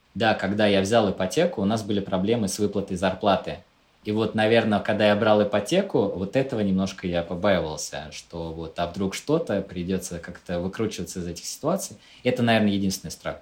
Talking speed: 175 wpm